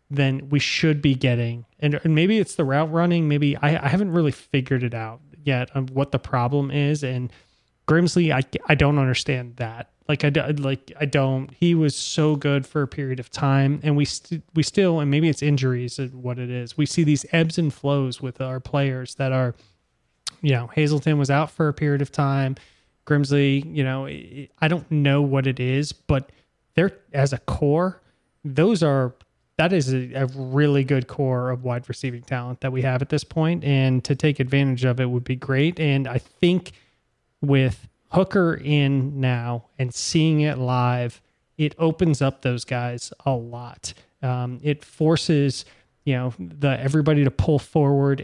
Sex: male